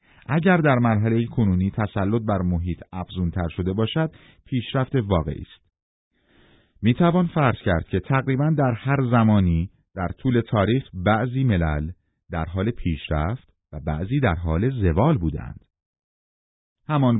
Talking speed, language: 125 wpm, Persian